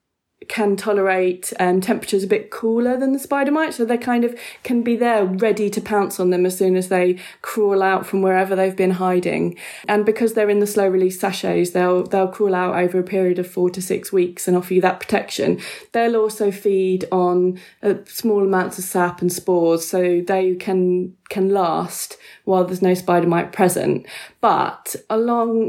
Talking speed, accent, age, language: 190 wpm, British, 20-39, English